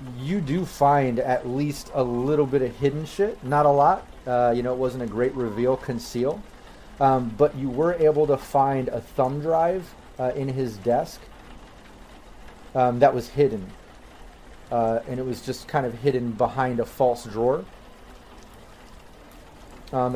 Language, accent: English, American